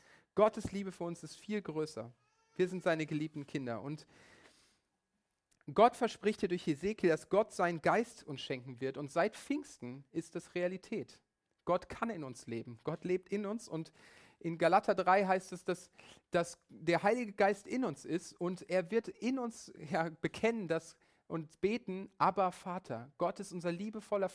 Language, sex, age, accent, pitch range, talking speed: German, male, 40-59, German, 145-195 Hz, 175 wpm